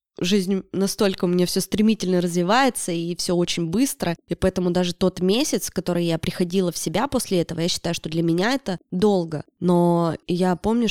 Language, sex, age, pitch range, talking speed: Russian, female, 20-39, 175-215 Hz, 180 wpm